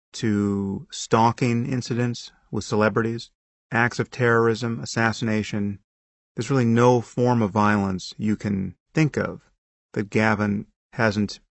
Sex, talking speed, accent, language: male, 115 wpm, American, English